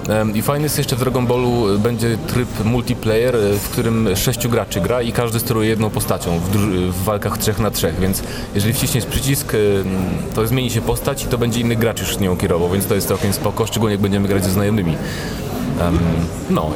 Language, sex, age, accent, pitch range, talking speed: Polish, male, 30-49, native, 100-120 Hz, 200 wpm